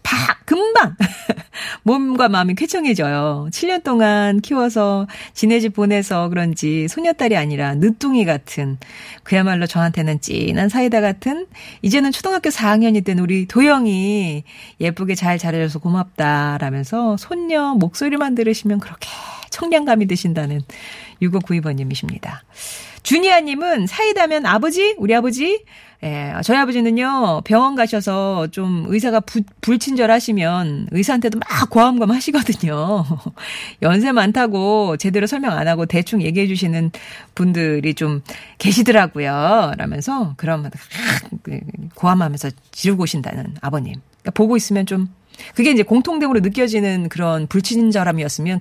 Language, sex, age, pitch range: Korean, female, 40-59, 165-235 Hz